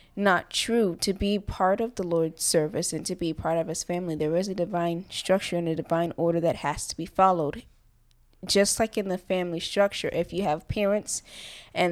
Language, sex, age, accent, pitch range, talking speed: English, female, 20-39, American, 165-190 Hz, 205 wpm